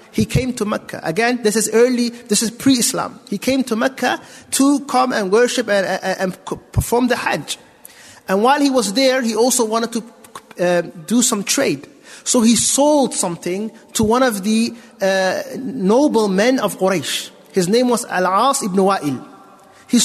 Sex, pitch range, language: male, 195-255 Hz, English